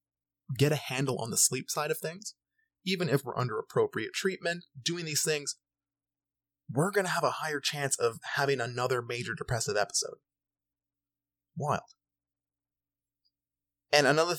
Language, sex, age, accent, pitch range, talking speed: English, male, 20-39, American, 135-175 Hz, 140 wpm